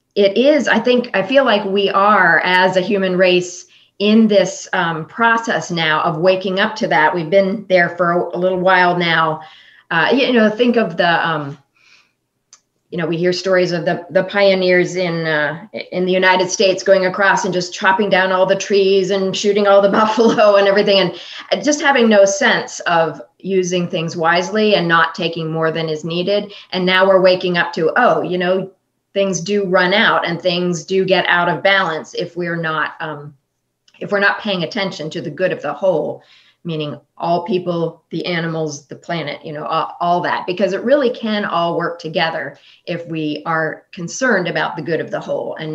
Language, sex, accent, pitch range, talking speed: English, female, American, 165-195 Hz, 200 wpm